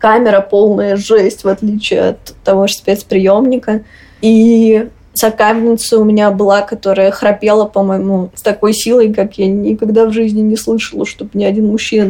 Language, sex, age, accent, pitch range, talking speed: Russian, female, 20-39, native, 200-230 Hz, 155 wpm